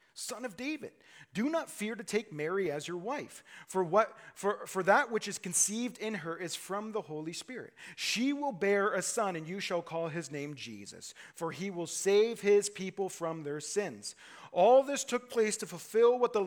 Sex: male